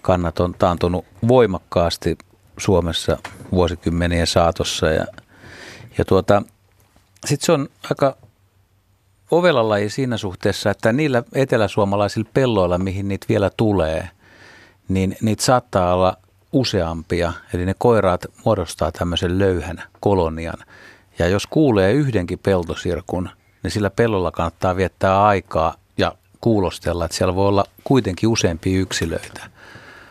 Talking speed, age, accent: 115 wpm, 50-69, native